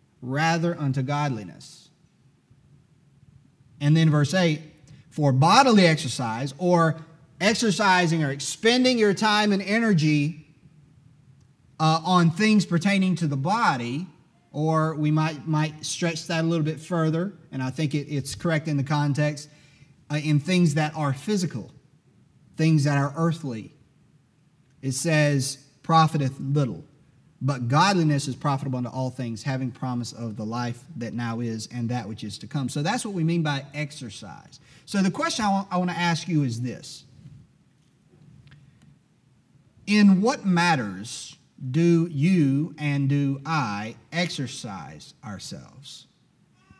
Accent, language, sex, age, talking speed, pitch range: American, English, male, 30-49, 135 wpm, 140-170 Hz